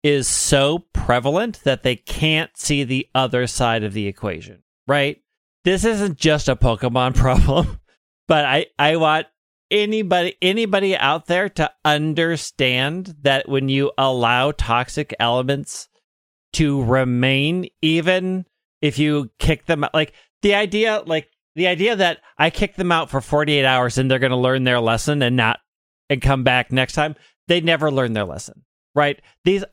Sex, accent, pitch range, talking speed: male, American, 125-160 Hz, 155 wpm